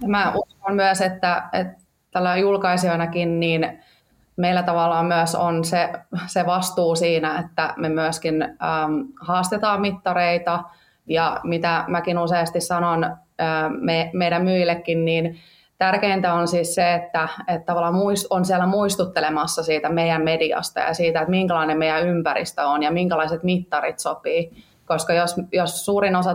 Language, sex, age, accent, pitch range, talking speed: Finnish, female, 20-39, native, 165-185 Hz, 135 wpm